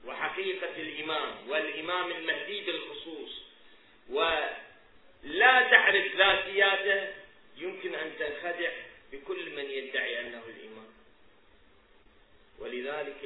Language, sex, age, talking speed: Arabic, male, 40-59, 75 wpm